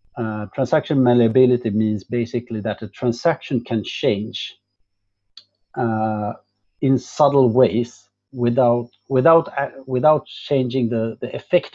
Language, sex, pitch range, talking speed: English, male, 110-130 Hz, 110 wpm